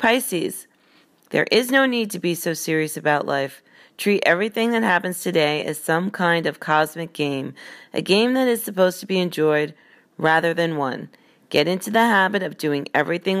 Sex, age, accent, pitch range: female, 40-59, American, 155-200 Hz